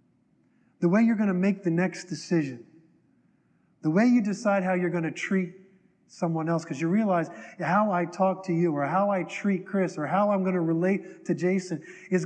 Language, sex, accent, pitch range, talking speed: English, male, American, 160-210 Hz, 205 wpm